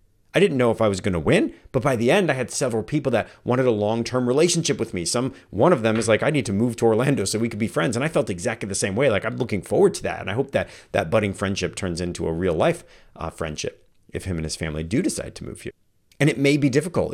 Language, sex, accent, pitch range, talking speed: English, male, American, 95-120 Hz, 285 wpm